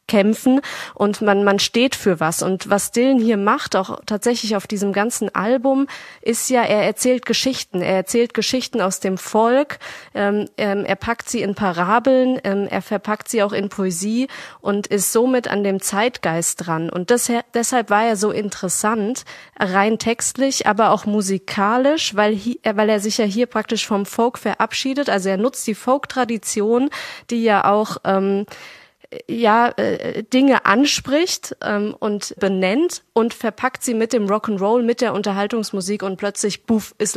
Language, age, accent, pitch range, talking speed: German, 30-49, German, 195-235 Hz, 165 wpm